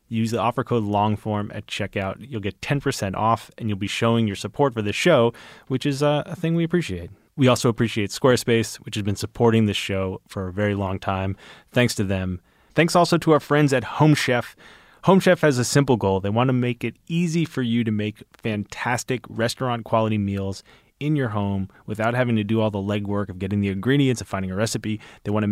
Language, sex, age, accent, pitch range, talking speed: English, male, 20-39, American, 105-140 Hz, 215 wpm